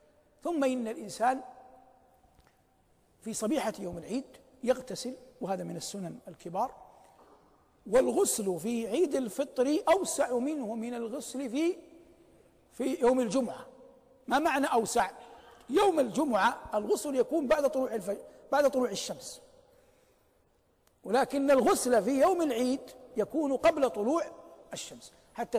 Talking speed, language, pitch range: 110 wpm, Arabic, 235-295 Hz